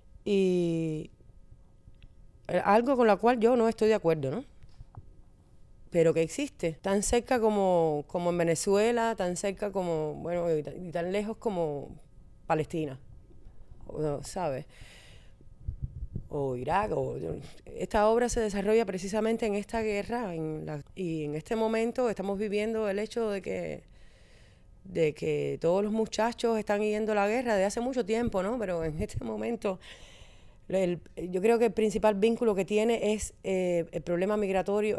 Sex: female